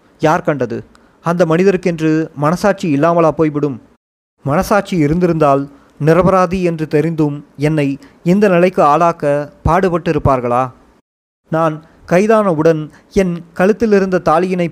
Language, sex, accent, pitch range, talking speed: Tamil, male, native, 150-180 Hz, 90 wpm